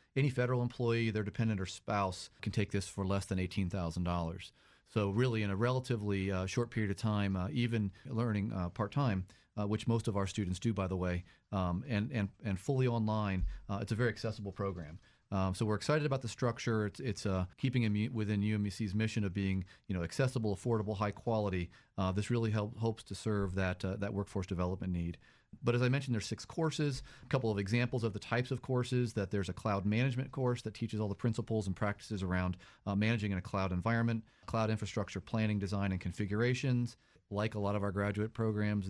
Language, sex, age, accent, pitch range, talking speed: English, male, 40-59, American, 95-115 Hz, 210 wpm